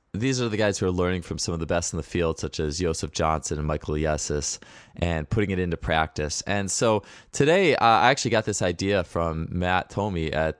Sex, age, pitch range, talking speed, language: male, 20-39, 80-100 Hz, 225 wpm, English